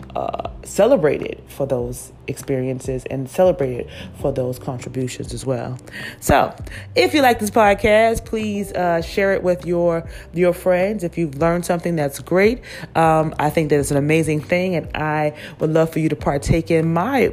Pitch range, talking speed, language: 140-175 Hz, 175 wpm, English